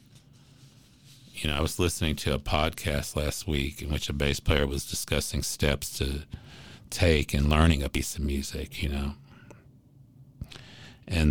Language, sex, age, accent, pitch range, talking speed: English, male, 50-69, American, 75-120 Hz, 155 wpm